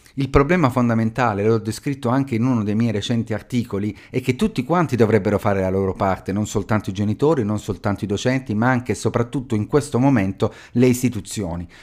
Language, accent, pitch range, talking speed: Italian, native, 110-140 Hz, 195 wpm